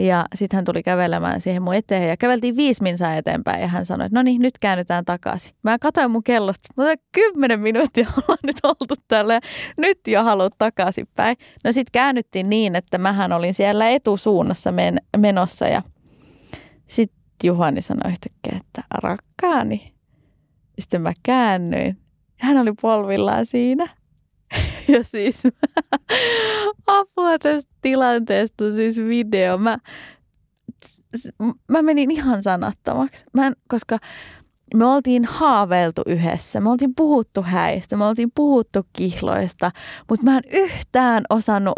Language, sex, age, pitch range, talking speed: Finnish, female, 20-39, 190-260 Hz, 130 wpm